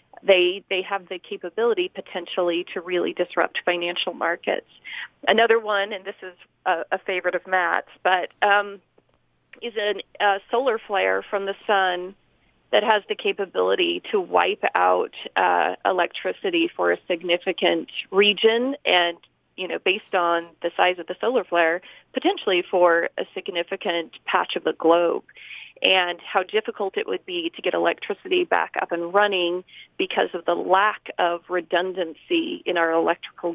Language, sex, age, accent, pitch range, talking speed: English, female, 30-49, American, 180-230 Hz, 150 wpm